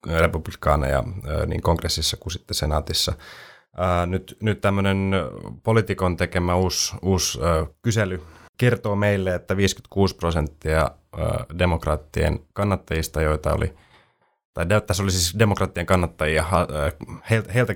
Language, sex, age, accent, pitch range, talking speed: Finnish, male, 30-49, native, 80-95 Hz, 100 wpm